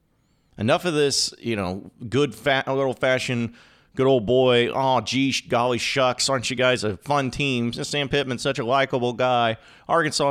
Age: 40-59